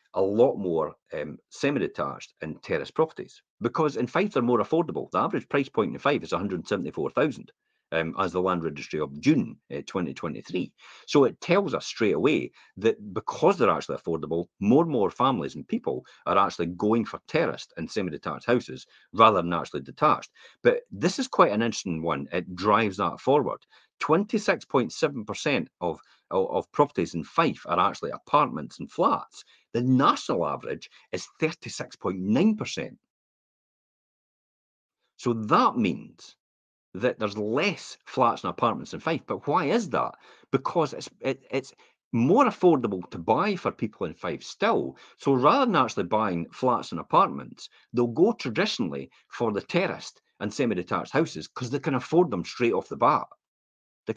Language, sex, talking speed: English, male, 155 wpm